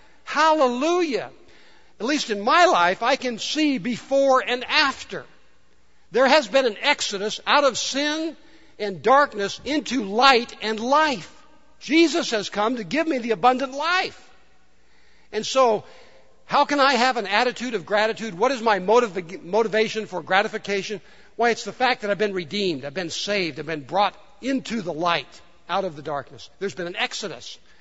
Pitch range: 175-245 Hz